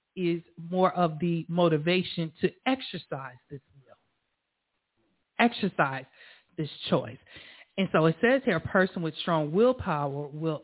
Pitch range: 160-190 Hz